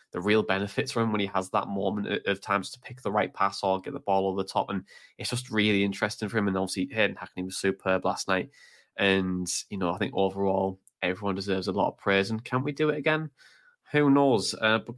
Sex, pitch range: male, 95-120 Hz